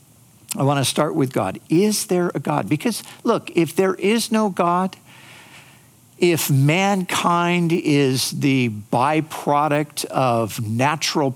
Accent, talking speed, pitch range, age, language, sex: American, 125 wpm, 125-165 Hz, 50-69, English, male